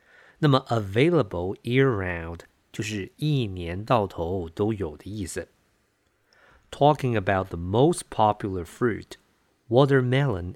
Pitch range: 95-130 Hz